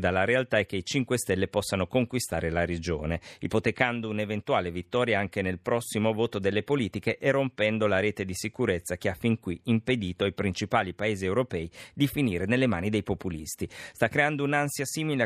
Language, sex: Italian, male